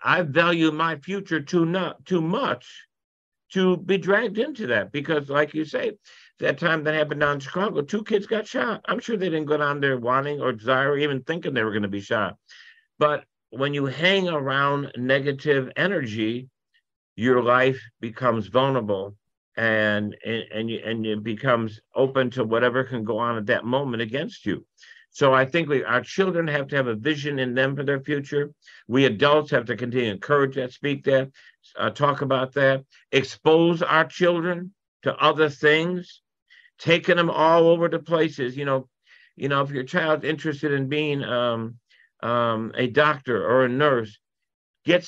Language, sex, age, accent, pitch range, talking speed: English, male, 60-79, American, 130-165 Hz, 180 wpm